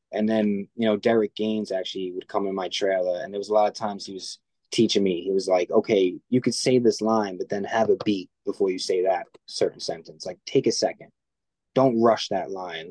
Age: 20-39